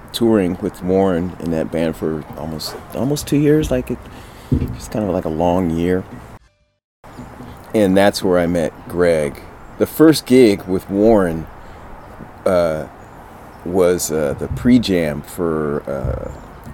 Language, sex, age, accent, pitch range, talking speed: English, male, 30-49, American, 85-115 Hz, 140 wpm